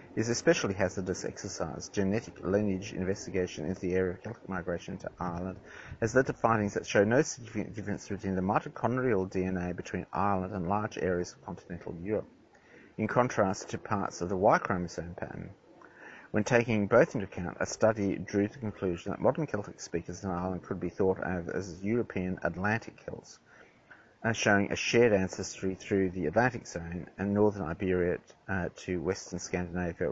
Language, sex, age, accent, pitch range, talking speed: English, male, 30-49, Australian, 90-105 Hz, 170 wpm